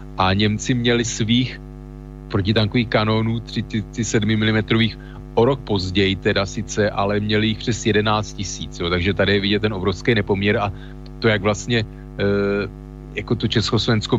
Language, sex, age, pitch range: Slovak, male, 40-59, 100-115 Hz